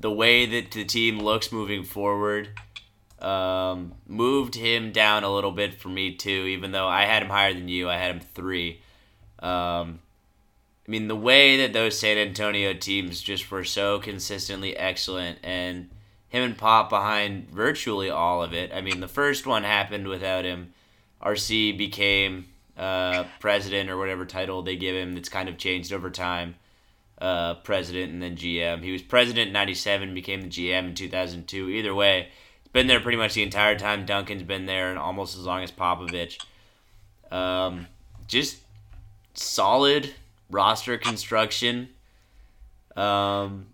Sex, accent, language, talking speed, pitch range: male, American, English, 165 wpm, 95-105 Hz